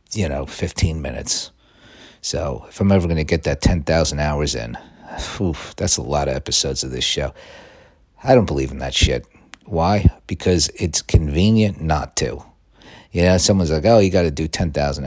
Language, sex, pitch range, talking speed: English, male, 70-90 Hz, 185 wpm